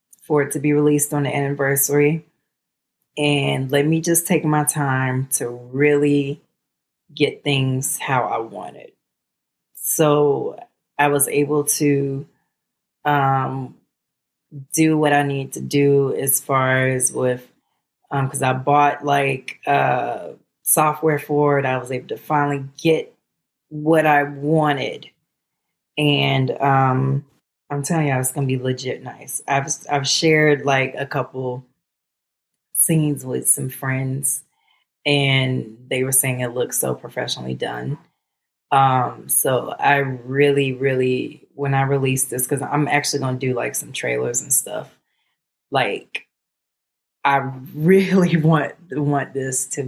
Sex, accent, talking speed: female, American, 135 wpm